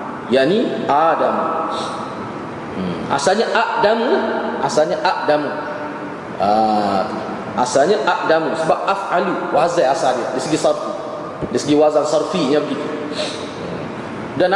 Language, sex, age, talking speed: Malay, male, 30-49, 105 wpm